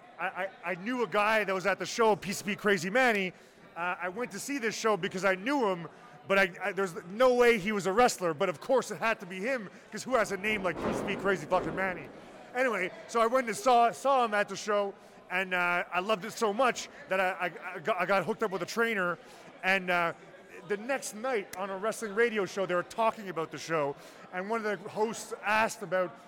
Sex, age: male, 30-49